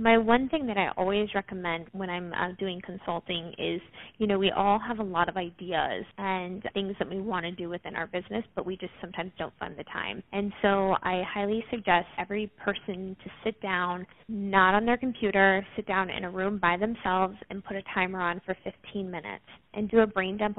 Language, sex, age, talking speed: English, female, 20-39, 215 wpm